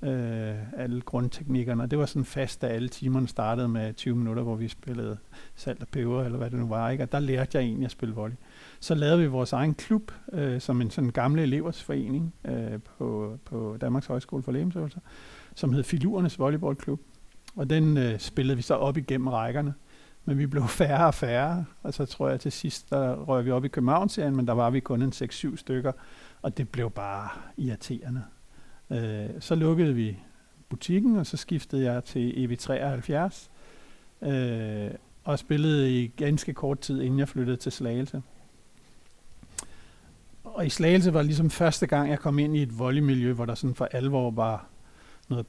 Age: 60-79